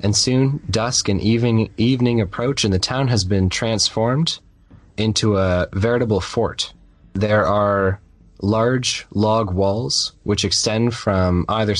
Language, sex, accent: English, male, American